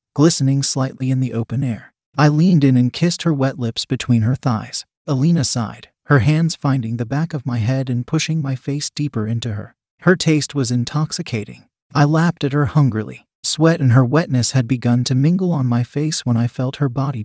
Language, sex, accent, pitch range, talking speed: English, male, American, 120-155 Hz, 205 wpm